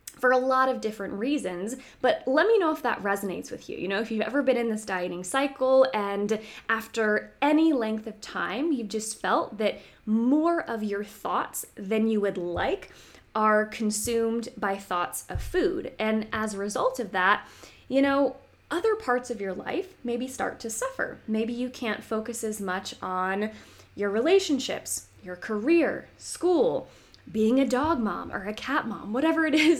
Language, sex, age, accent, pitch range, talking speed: English, female, 20-39, American, 205-270 Hz, 180 wpm